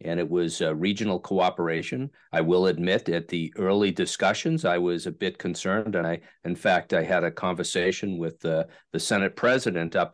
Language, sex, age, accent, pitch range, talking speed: English, male, 50-69, American, 95-115 Hz, 190 wpm